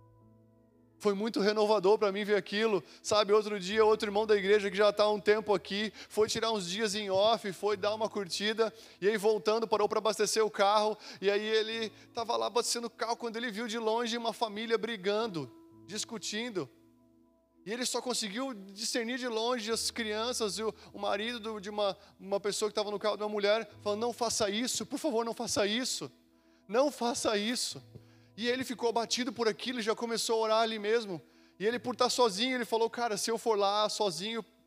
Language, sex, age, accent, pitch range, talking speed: Portuguese, male, 20-39, Brazilian, 200-225 Hz, 200 wpm